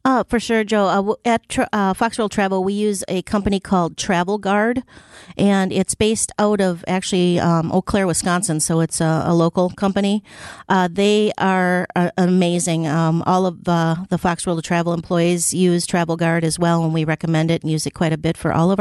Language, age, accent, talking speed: English, 40-59, American, 205 wpm